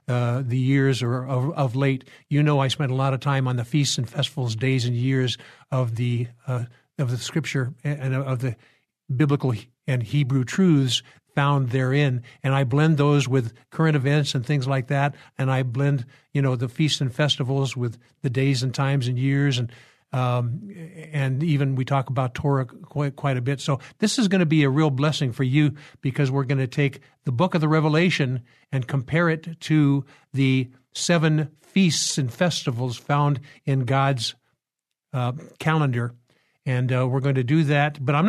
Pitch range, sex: 130-150 Hz, male